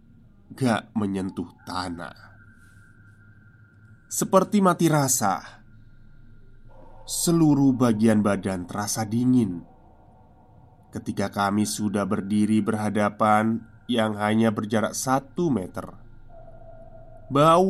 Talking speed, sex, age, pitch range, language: 75 wpm, male, 20-39, 105-130 Hz, Indonesian